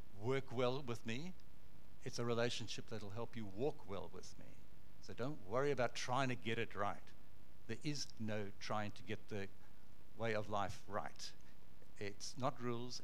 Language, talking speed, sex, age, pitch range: English, 170 wpm, male, 60-79, 105-135 Hz